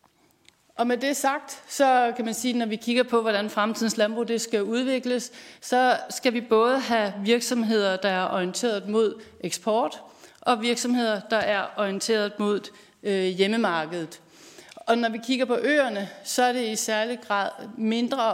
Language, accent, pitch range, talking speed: Danish, native, 195-235 Hz, 165 wpm